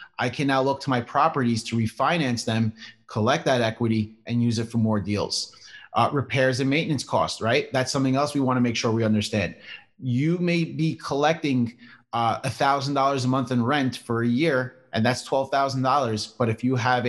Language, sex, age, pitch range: English, male, 30-49, 120-145 Hz